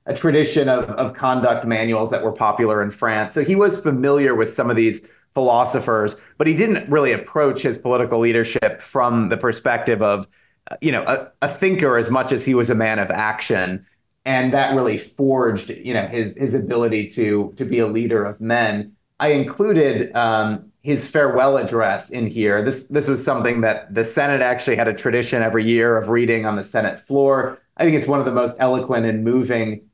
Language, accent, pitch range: English, American, 115-140 Hz